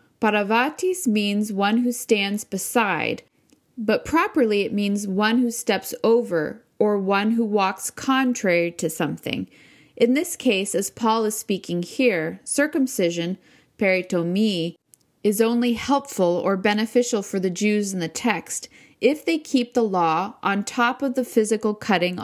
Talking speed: 145 wpm